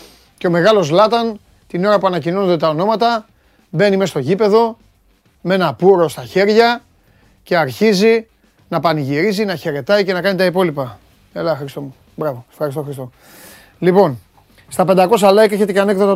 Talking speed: 160 wpm